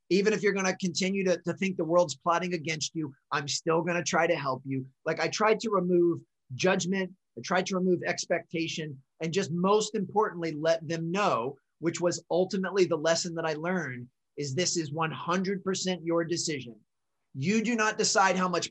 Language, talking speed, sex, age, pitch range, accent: English, 190 wpm, male, 30-49, 150-180 Hz, American